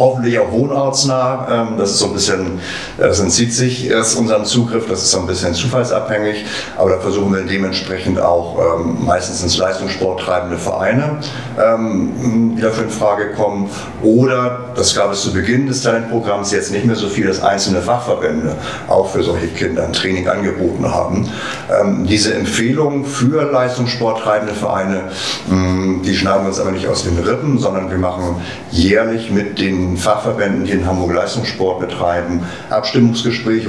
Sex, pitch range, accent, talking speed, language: male, 90-115 Hz, German, 155 wpm, German